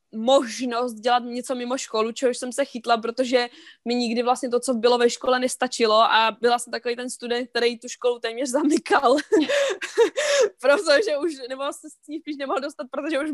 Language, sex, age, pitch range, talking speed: Czech, female, 20-39, 225-265 Hz, 195 wpm